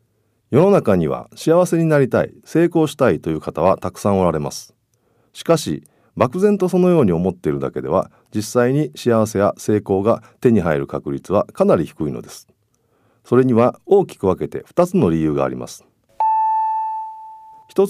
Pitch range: 105-165 Hz